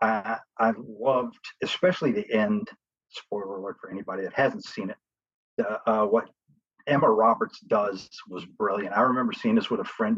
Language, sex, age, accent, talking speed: English, male, 50-69, American, 165 wpm